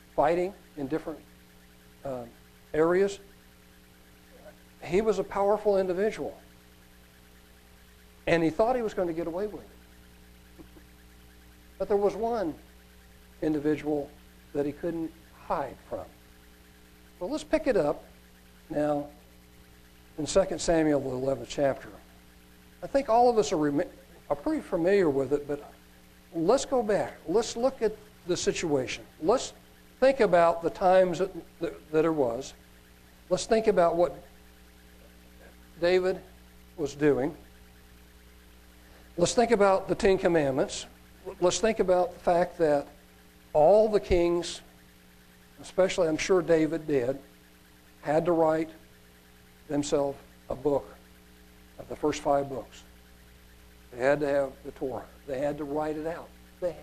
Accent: American